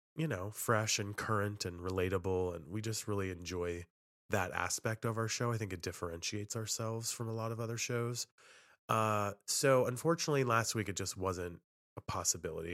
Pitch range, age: 95-120 Hz, 20-39